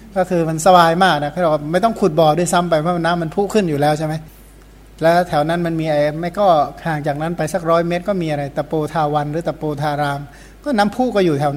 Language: Thai